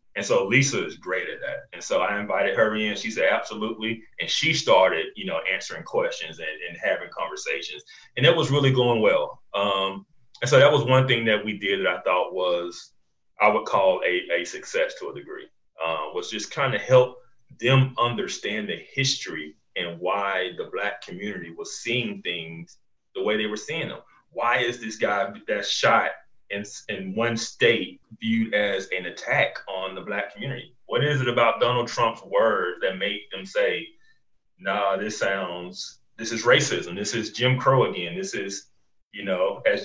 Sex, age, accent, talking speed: male, 30-49, American, 190 wpm